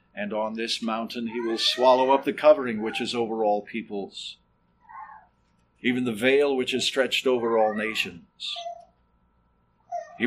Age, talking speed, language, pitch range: 50-69, 145 wpm, English, 115-165 Hz